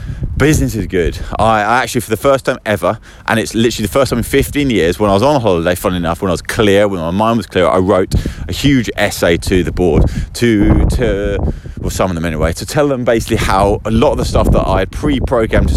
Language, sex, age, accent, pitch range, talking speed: English, male, 30-49, British, 90-120 Hz, 250 wpm